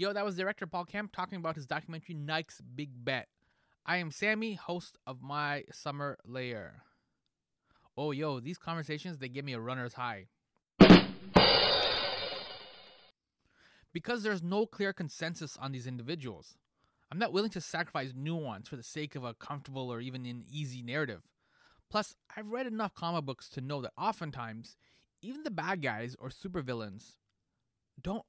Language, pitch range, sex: English, 130-185 Hz, male